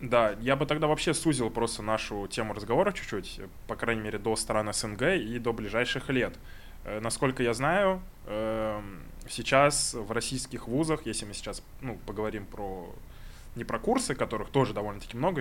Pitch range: 105-135 Hz